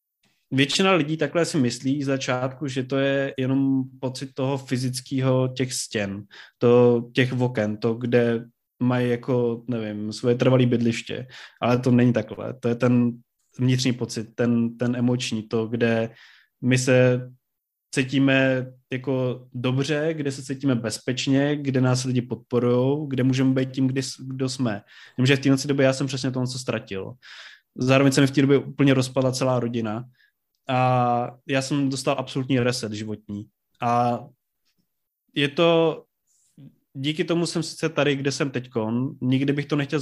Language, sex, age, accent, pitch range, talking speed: Czech, male, 20-39, native, 120-135 Hz, 155 wpm